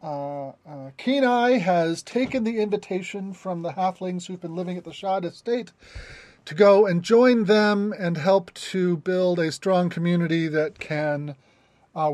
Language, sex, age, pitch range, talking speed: English, male, 30-49, 150-215 Hz, 160 wpm